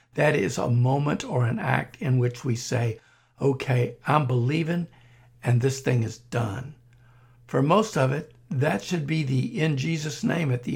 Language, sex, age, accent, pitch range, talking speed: English, male, 60-79, American, 120-155 Hz, 180 wpm